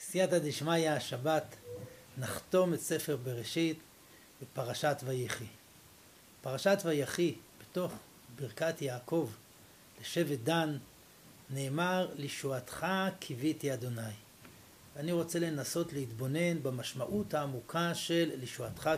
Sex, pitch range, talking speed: male, 130-180 Hz, 90 wpm